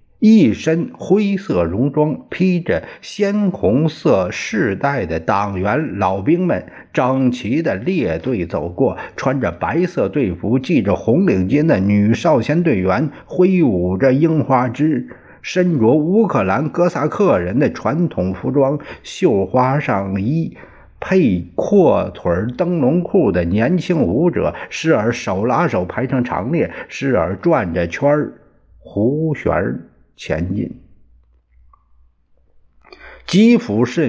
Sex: male